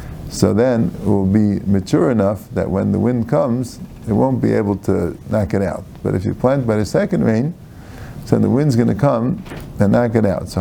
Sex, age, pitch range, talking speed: male, 50-69, 105-135 Hz, 225 wpm